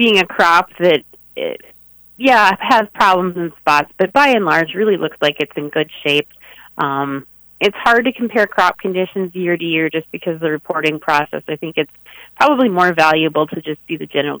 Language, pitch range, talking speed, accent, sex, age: English, 150-200 Hz, 200 wpm, American, female, 30-49